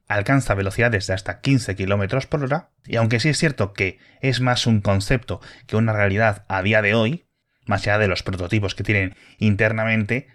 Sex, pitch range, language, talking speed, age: male, 100-125 Hz, Spanish, 190 wpm, 20-39